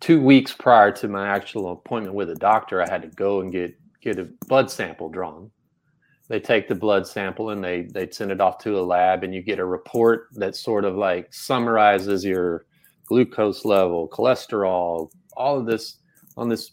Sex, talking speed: male, 195 wpm